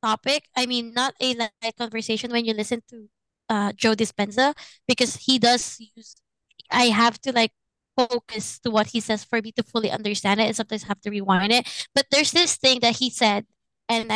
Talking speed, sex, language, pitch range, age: 200 wpm, female, Filipino, 220-255 Hz, 20-39